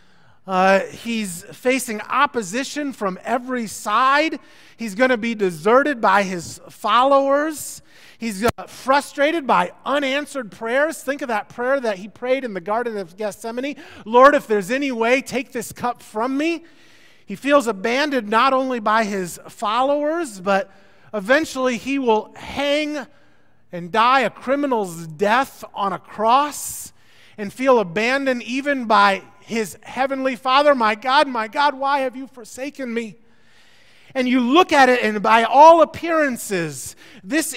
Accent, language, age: American, English, 30-49